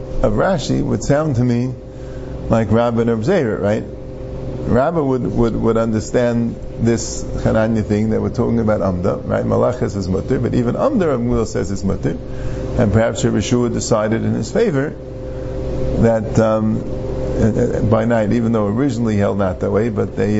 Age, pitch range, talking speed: 50-69, 105-130 Hz, 160 wpm